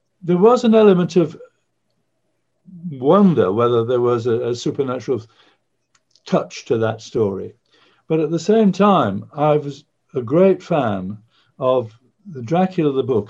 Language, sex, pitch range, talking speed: English, male, 115-165 Hz, 140 wpm